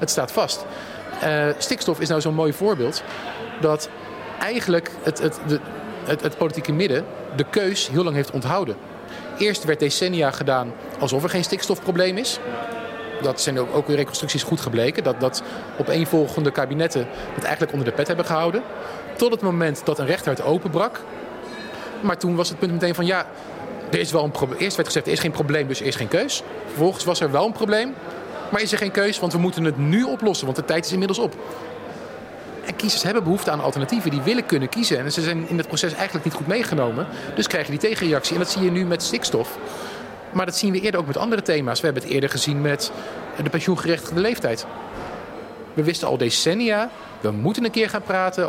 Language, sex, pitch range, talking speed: Dutch, male, 145-190 Hz, 205 wpm